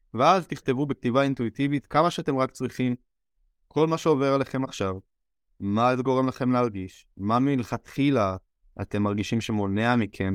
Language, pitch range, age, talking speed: Hebrew, 100-130 Hz, 20-39, 140 wpm